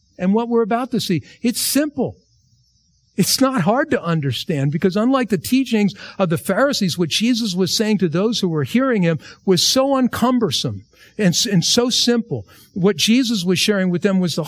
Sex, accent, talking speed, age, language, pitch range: male, American, 180 wpm, 50-69, English, 150-230 Hz